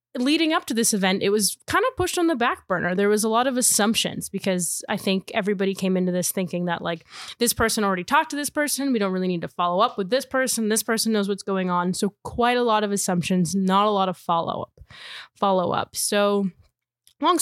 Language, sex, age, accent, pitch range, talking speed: English, female, 20-39, American, 180-230 Hz, 240 wpm